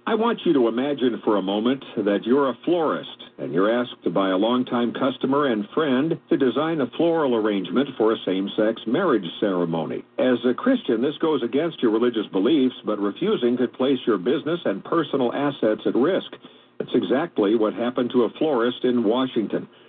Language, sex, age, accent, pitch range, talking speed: English, male, 60-79, American, 110-140 Hz, 185 wpm